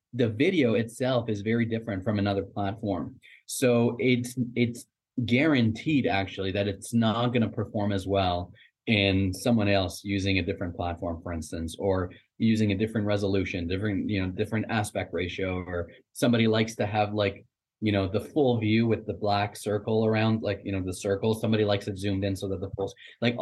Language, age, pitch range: English, 20-39, 100-115 Hz